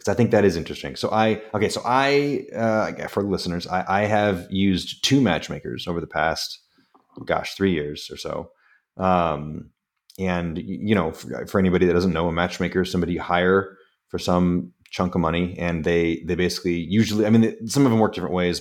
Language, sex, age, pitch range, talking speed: English, male, 30-49, 80-100 Hz, 205 wpm